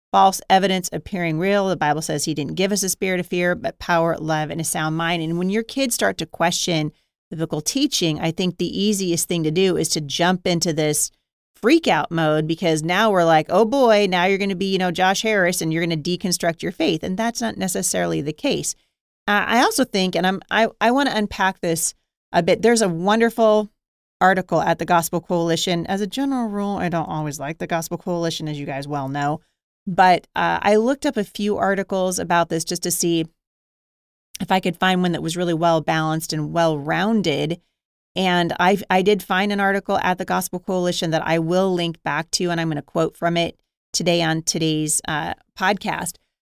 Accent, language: American, English